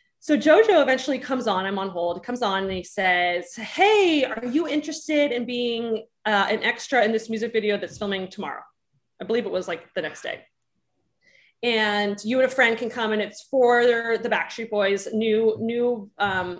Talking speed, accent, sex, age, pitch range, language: 195 wpm, American, female, 30-49, 200-255 Hz, English